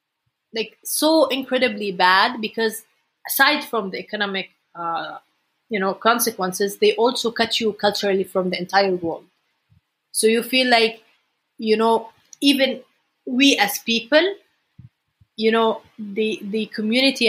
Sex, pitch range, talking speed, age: female, 200-245 Hz, 130 wpm, 30-49